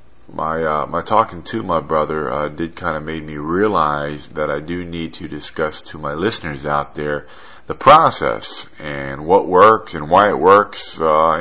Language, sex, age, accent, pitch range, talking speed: English, male, 40-59, American, 75-85 Hz, 185 wpm